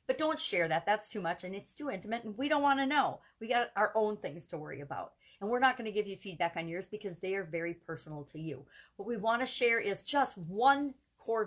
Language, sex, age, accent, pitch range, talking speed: English, female, 40-59, American, 170-235 Hz, 265 wpm